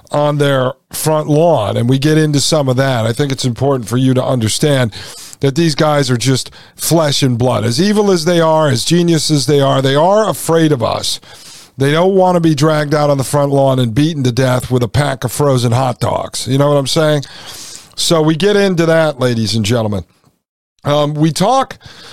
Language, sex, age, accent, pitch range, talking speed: English, male, 50-69, American, 130-165 Hz, 215 wpm